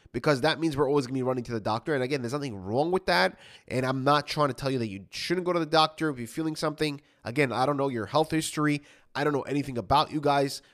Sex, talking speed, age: male, 285 wpm, 20-39